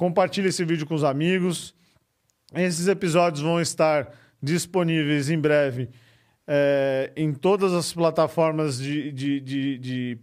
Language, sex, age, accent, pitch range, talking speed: Portuguese, male, 40-59, Brazilian, 140-175 Hz, 115 wpm